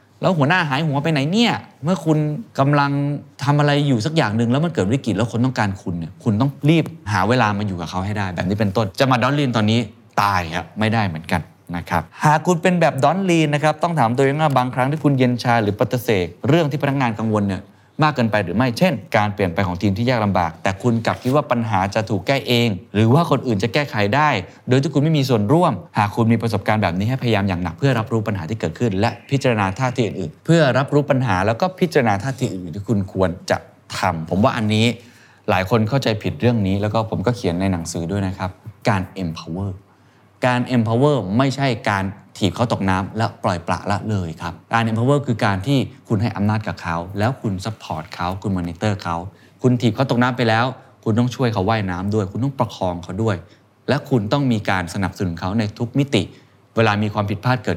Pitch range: 100-130 Hz